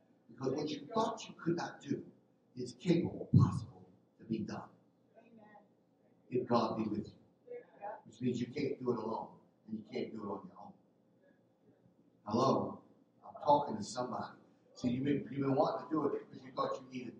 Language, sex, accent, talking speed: English, male, American, 190 wpm